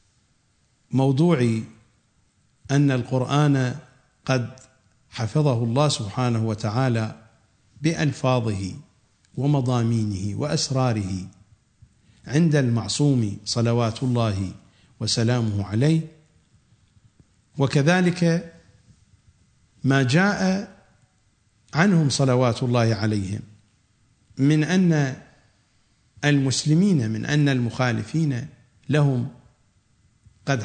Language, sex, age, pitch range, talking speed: English, male, 50-69, 110-150 Hz, 65 wpm